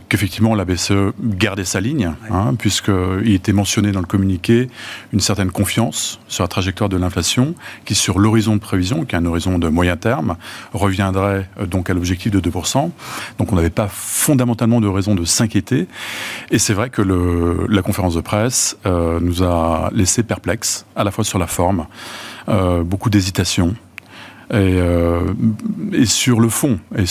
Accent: French